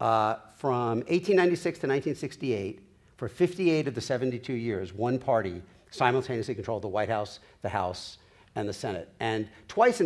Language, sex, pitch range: English, male, 120-170 Hz